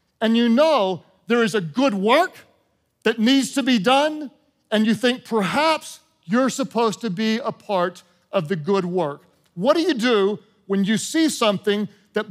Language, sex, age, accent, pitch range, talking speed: English, male, 50-69, American, 195-255 Hz, 175 wpm